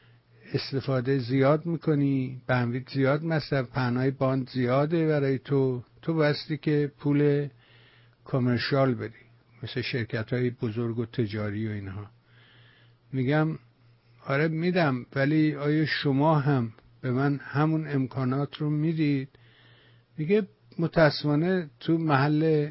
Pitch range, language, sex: 120-145 Hz, English, male